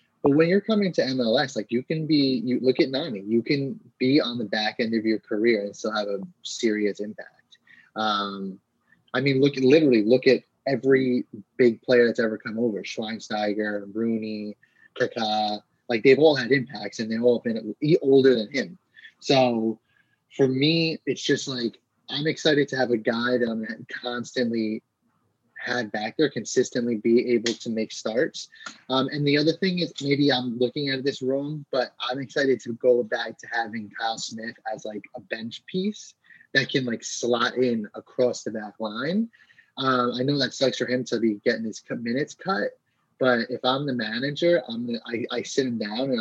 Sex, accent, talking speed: male, American, 190 wpm